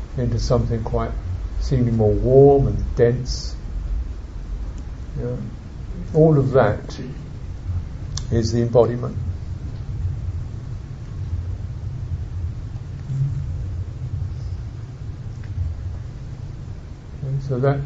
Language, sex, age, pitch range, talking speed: English, male, 60-79, 100-135 Hz, 50 wpm